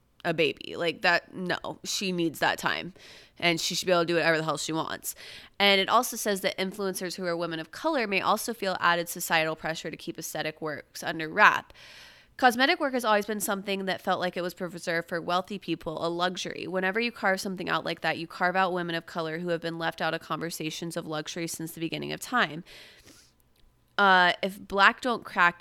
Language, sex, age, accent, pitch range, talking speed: English, female, 20-39, American, 165-210 Hz, 220 wpm